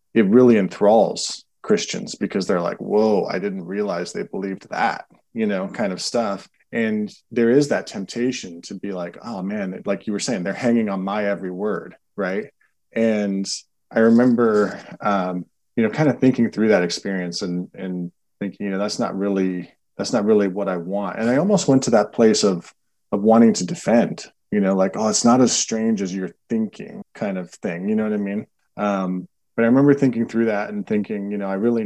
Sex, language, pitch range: male, English, 95-120 Hz